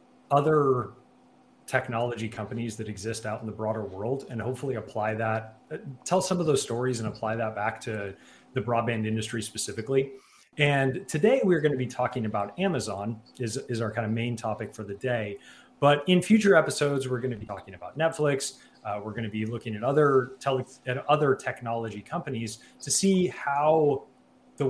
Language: English